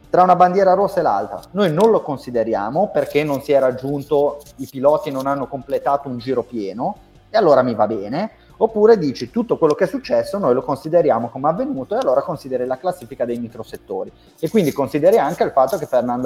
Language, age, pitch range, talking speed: Italian, 30-49, 130-195 Hz, 205 wpm